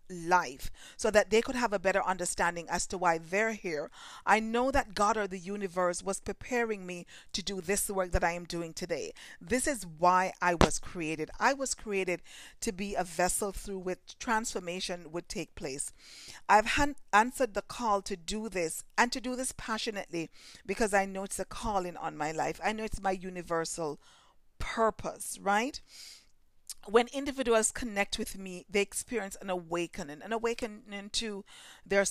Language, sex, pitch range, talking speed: English, female, 180-220 Hz, 175 wpm